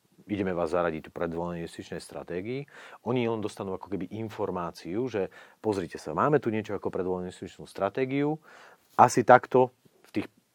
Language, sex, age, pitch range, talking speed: Slovak, male, 40-59, 90-125 Hz, 150 wpm